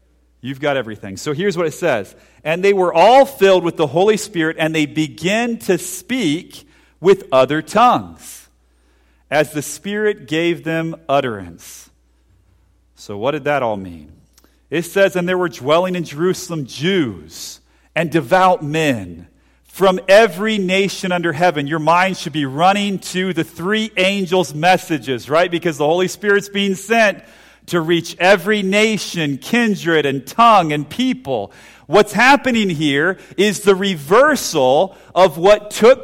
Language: English